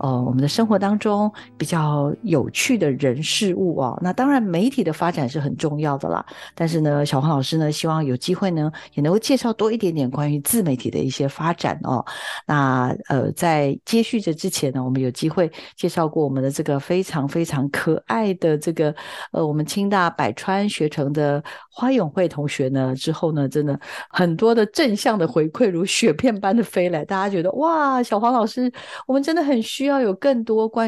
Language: Chinese